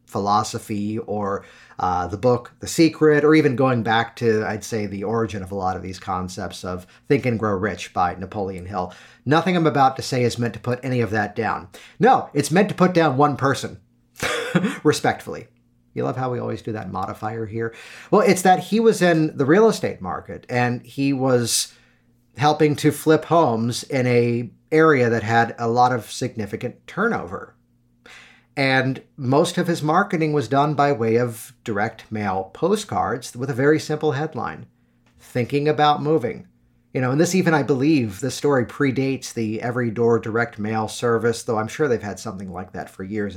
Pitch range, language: 110-145 Hz, English